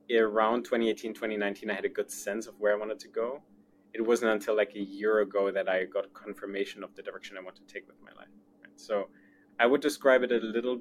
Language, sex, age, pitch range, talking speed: English, male, 20-39, 100-120 Hz, 235 wpm